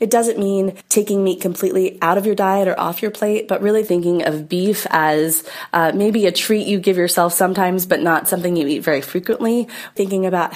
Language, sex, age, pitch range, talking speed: English, female, 20-39, 165-195 Hz, 210 wpm